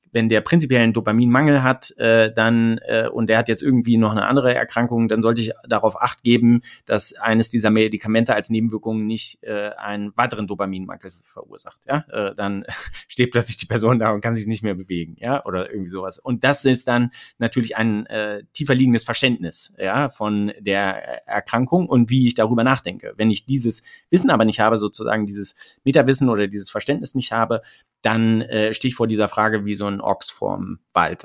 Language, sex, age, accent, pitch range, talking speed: German, male, 30-49, German, 105-125 Hz, 195 wpm